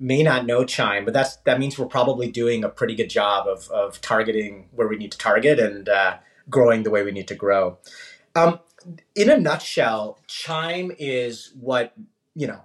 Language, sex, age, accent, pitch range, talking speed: English, male, 30-49, American, 115-150 Hz, 195 wpm